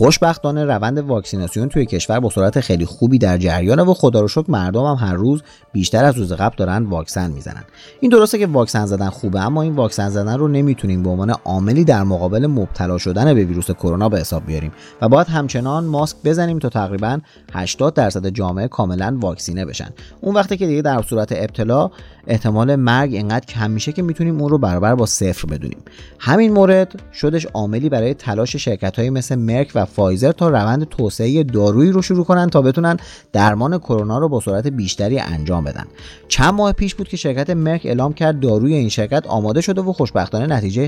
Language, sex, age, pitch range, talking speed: Persian, male, 30-49, 100-145 Hz, 190 wpm